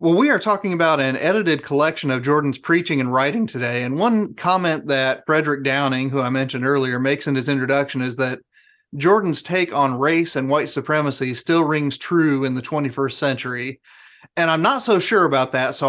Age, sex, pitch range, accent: 30-49, male, 135-165 Hz, American